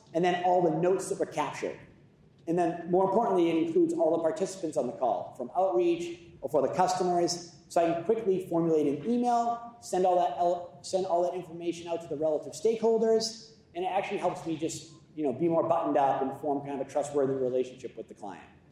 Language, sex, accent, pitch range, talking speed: English, male, American, 150-185 Hz, 215 wpm